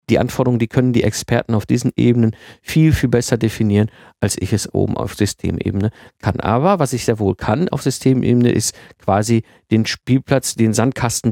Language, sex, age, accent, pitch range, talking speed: German, male, 50-69, German, 110-135 Hz, 180 wpm